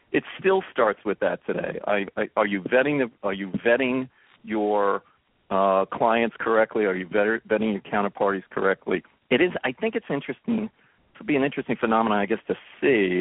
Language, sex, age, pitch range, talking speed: English, male, 50-69, 100-130 Hz, 180 wpm